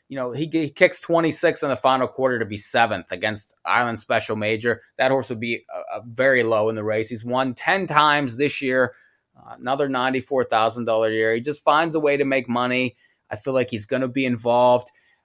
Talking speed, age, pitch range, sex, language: 215 wpm, 20-39, 120-150 Hz, male, English